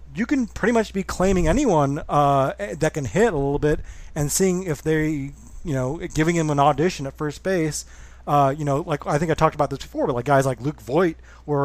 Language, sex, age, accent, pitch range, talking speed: English, male, 30-49, American, 125-170 Hz, 230 wpm